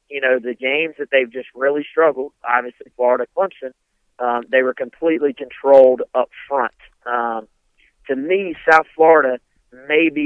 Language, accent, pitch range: English, American, 120-145 Hz